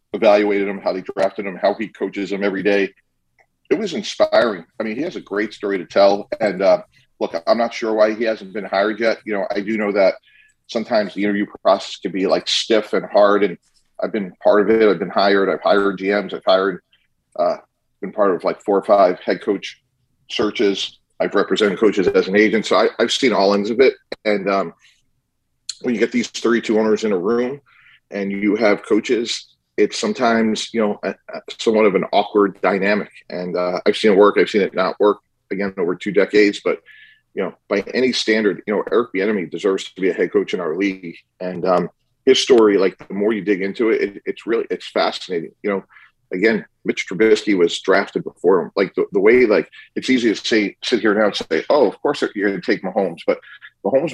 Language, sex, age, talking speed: English, male, 40-59, 220 wpm